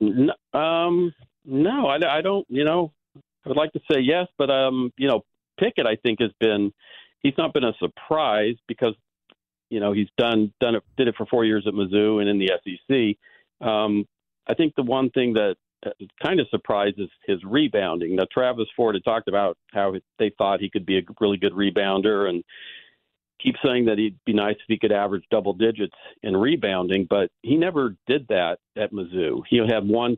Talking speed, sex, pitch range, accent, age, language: 195 wpm, male, 100-120 Hz, American, 50-69, English